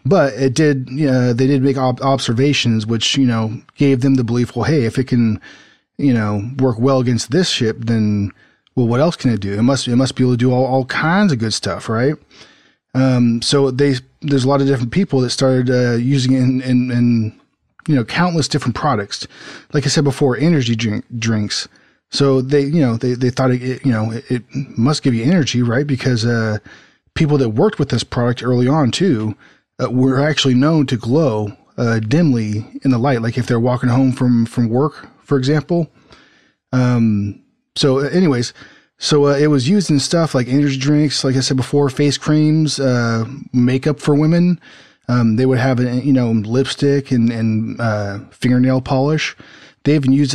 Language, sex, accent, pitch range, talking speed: English, male, American, 120-145 Hz, 205 wpm